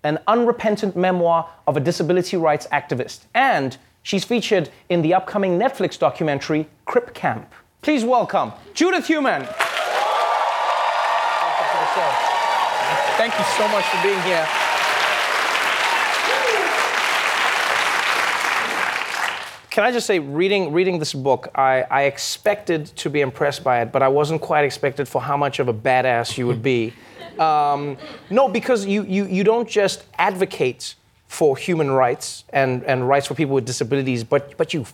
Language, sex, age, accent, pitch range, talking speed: English, male, 30-49, American, 130-185 Hz, 140 wpm